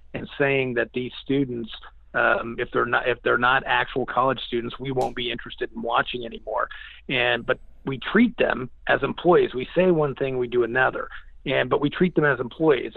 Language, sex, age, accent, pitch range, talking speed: English, male, 40-59, American, 125-170 Hz, 200 wpm